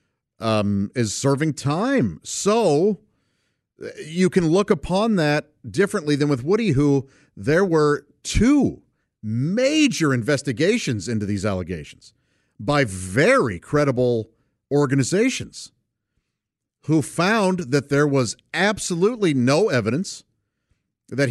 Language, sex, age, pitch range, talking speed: English, male, 50-69, 110-155 Hz, 100 wpm